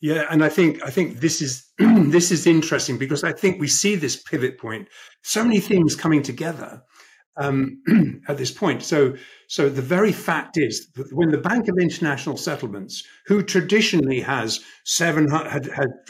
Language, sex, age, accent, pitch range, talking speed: English, male, 50-69, British, 135-175 Hz, 175 wpm